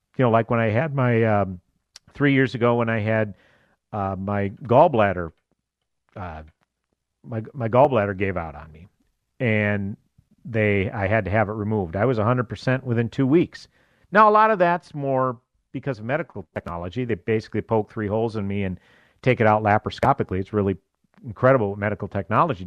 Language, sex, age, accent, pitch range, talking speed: English, male, 50-69, American, 105-165 Hz, 180 wpm